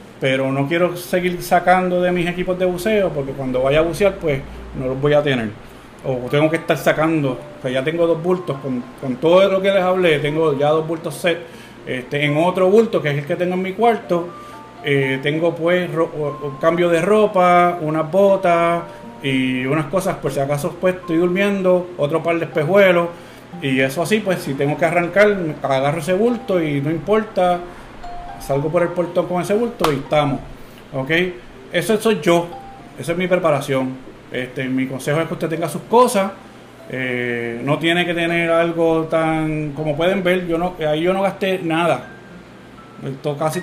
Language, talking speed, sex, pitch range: Spanish, 185 wpm, male, 145-180 Hz